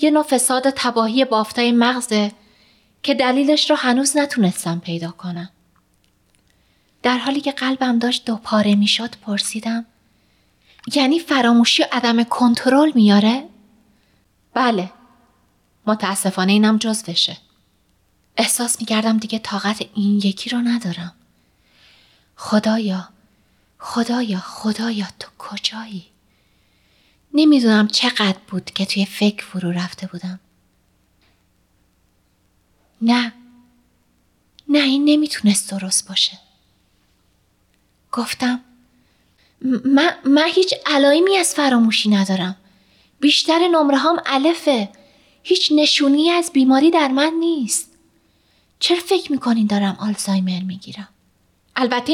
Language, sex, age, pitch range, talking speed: Persian, female, 30-49, 195-275 Hz, 100 wpm